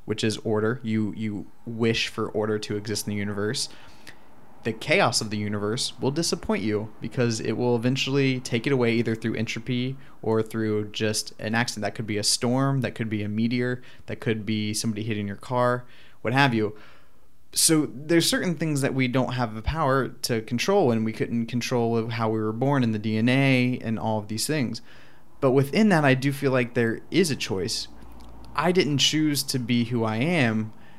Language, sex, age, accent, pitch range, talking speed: English, male, 20-39, American, 110-130 Hz, 200 wpm